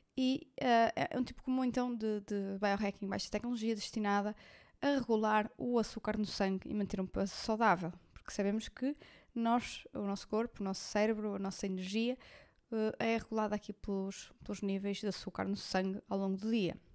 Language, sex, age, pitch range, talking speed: Portuguese, female, 20-39, 200-250 Hz, 175 wpm